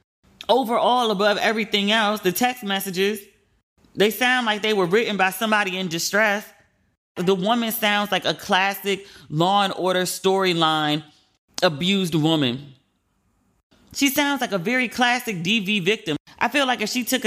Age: 30-49